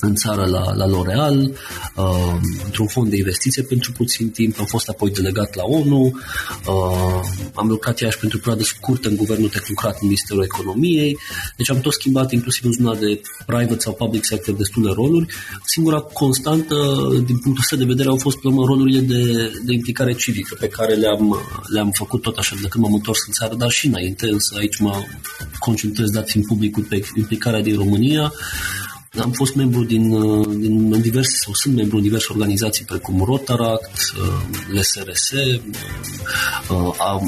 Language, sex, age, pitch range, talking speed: Romanian, male, 30-49, 105-125 Hz, 165 wpm